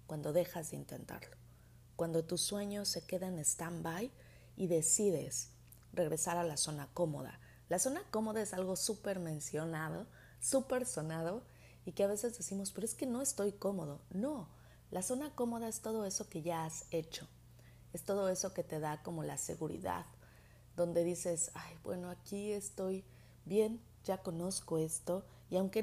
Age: 30-49